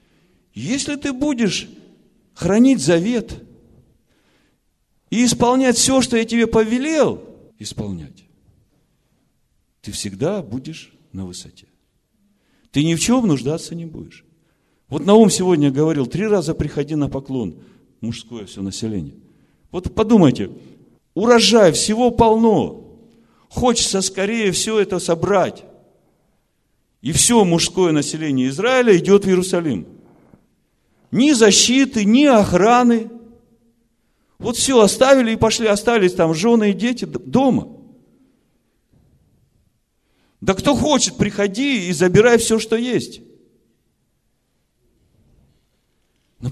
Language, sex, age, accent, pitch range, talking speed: Russian, male, 50-69, native, 155-235 Hz, 105 wpm